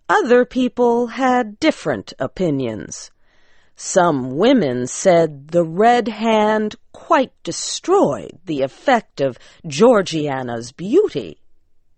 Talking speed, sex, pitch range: 90 wpm, female, 155-250 Hz